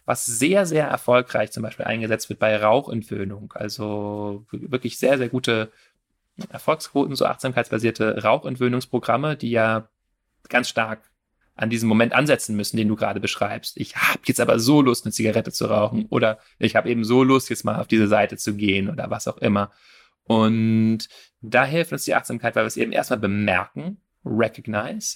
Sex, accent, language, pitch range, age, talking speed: male, German, German, 110-135 Hz, 30-49, 170 wpm